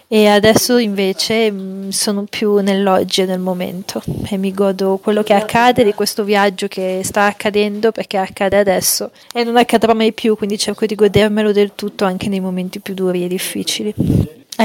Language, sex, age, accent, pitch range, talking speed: Italian, female, 30-49, native, 185-215 Hz, 175 wpm